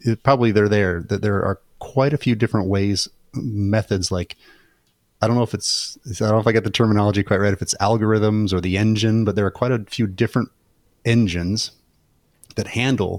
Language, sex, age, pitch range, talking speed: English, male, 30-49, 95-110 Hz, 205 wpm